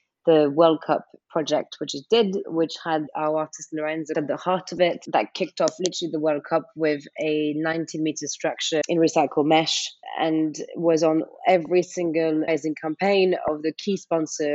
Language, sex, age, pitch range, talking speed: English, female, 30-49, 145-170 Hz, 175 wpm